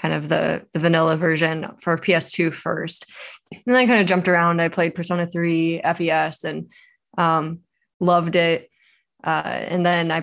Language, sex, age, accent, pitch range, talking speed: English, female, 20-39, American, 165-180 Hz, 170 wpm